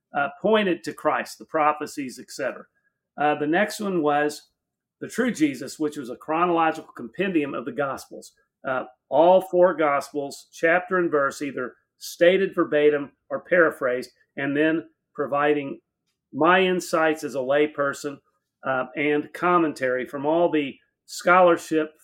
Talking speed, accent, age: 135 wpm, American, 40-59